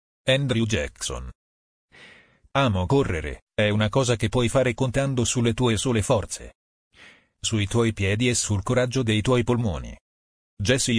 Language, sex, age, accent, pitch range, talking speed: Italian, male, 40-59, native, 90-120 Hz, 135 wpm